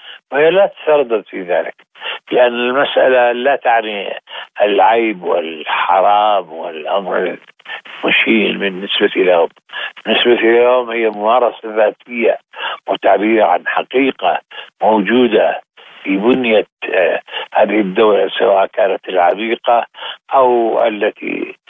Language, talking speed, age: Arabic, 90 wpm, 60-79